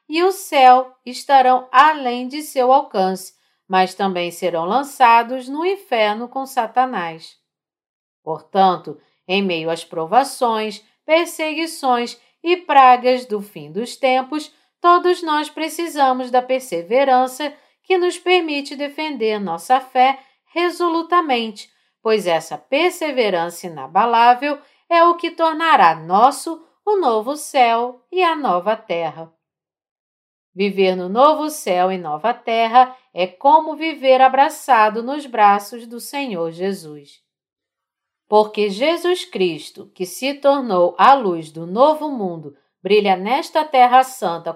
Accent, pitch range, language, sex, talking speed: Brazilian, 190-290 Hz, Portuguese, female, 115 wpm